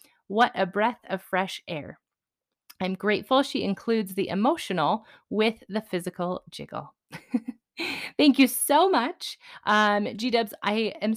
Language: English